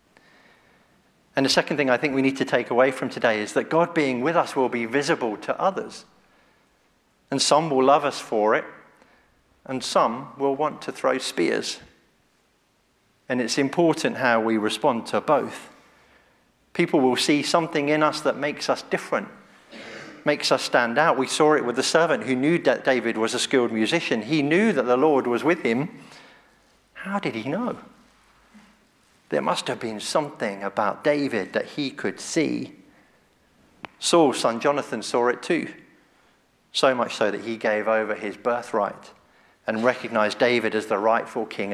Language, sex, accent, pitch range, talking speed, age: English, male, British, 120-145 Hz, 170 wpm, 50-69